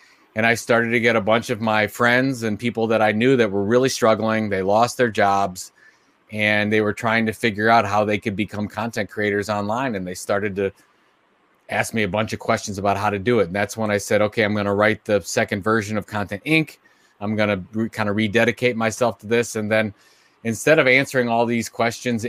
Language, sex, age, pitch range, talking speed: English, male, 30-49, 105-115 Hz, 230 wpm